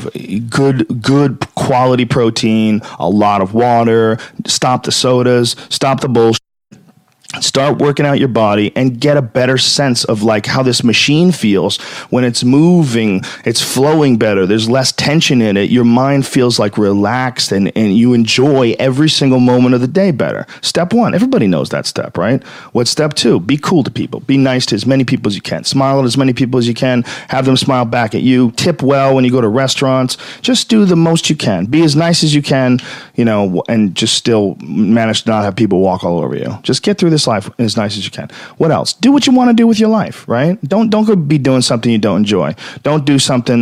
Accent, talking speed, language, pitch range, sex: American, 225 wpm, English, 110-150 Hz, male